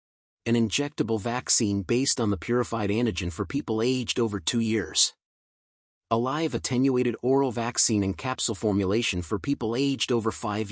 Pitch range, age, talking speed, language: 100-130 Hz, 30-49, 150 wpm, English